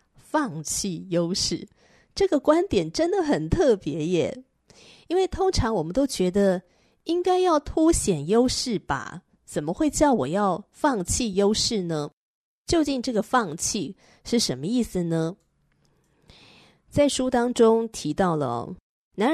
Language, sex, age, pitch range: Chinese, female, 20-39, 165-235 Hz